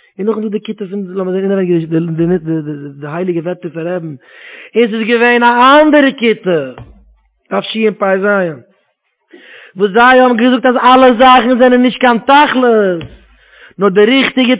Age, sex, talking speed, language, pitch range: 20-39, male, 150 wpm, English, 165-200 Hz